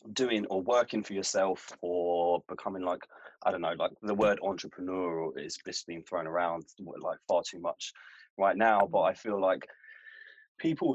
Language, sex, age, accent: English, male, 20-39, British